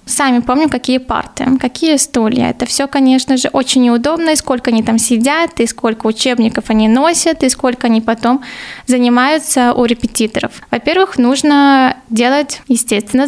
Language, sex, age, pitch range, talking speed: Russian, female, 10-29, 235-265 Hz, 150 wpm